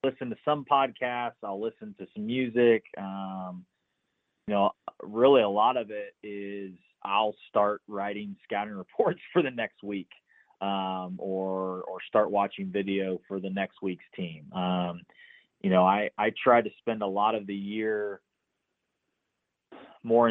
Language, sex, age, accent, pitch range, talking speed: English, male, 20-39, American, 95-105 Hz, 155 wpm